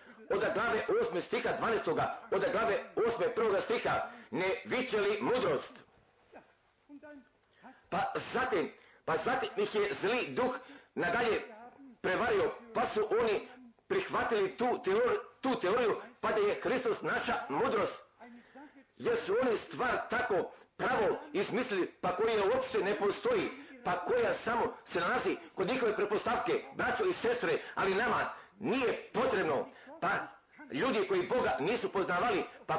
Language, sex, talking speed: Croatian, male, 130 wpm